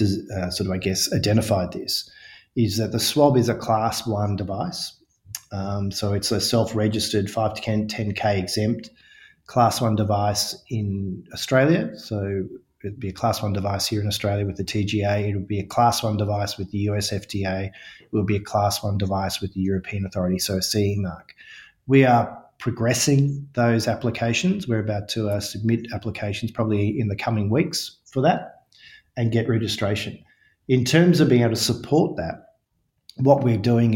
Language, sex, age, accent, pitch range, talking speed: English, male, 30-49, Australian, 105-120 Hz, 180 wpm